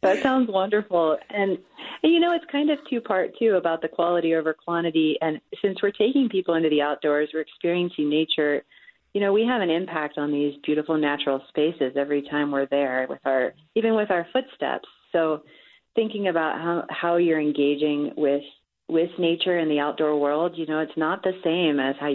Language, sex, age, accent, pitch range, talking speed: English, female, 30-49, American, 140-175 Hz, 190 wpm